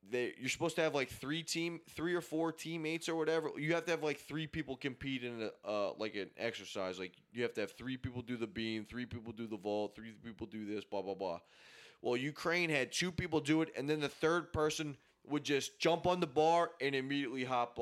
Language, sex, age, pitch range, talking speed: English, male, 20-39, 120-155 Hz, 240 wpm